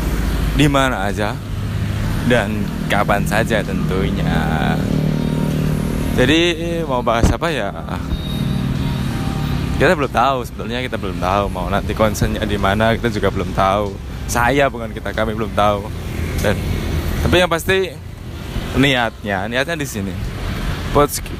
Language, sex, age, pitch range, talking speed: Indonesian, male, 20-39, 95-125 Hz, 120 wpm